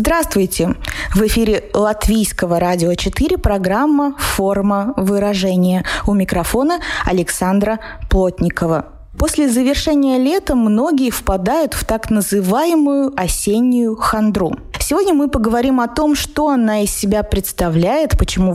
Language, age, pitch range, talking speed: Russian, 20-39, 185-250 Hz, 110 wpm